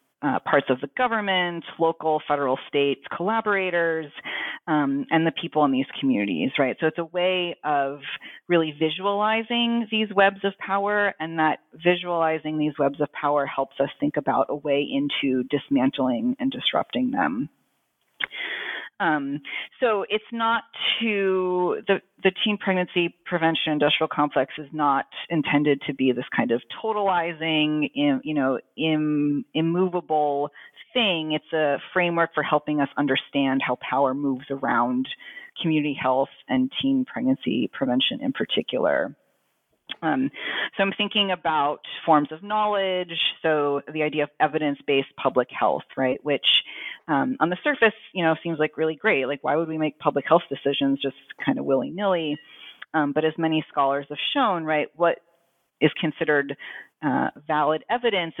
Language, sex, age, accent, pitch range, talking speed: English, female, 30-49, American, 145-195 Hz, 150 wpm